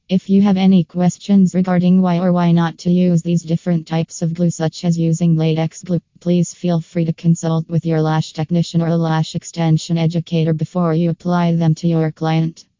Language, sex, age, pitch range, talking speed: English, female, 20-39, 165-180 Hz, 200 wpm